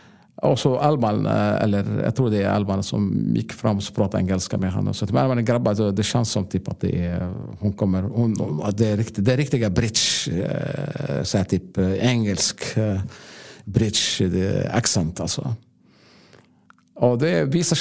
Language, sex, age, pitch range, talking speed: Swedish, male, 50-69, 95-120 Hz, 170 wpm